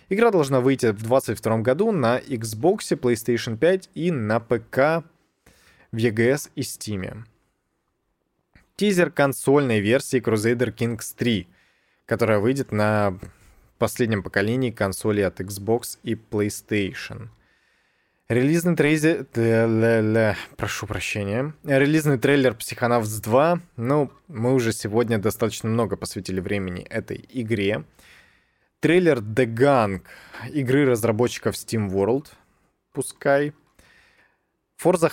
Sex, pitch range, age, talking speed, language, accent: male, 110-140 Hz, 20-39, 100 wpm, Russian, native